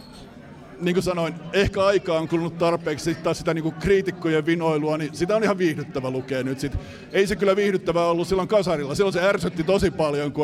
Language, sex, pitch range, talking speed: Finnish, male, 145-175 Hz, 190 wpm